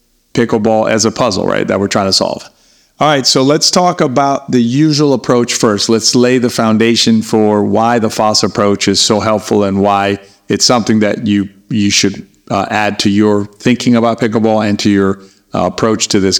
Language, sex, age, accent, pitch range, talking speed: English, male, 50-69, American, 105-120 Hz, 200 wpm